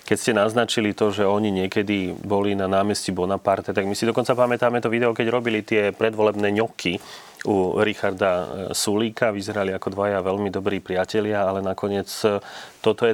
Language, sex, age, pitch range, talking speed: Slovak, male, 30-49, 95-110 Hz, 165 wpm